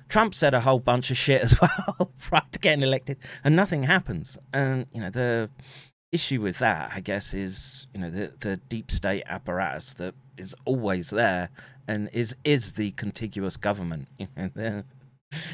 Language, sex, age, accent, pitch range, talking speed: English, male, 30-49, British, 90-135 Hz, 165 wpm